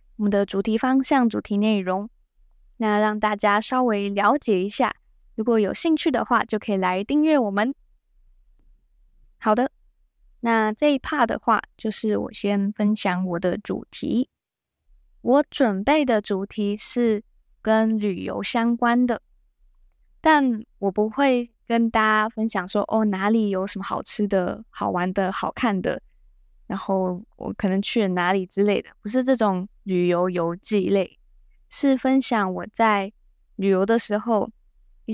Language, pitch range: Chinese, 195-235 Hz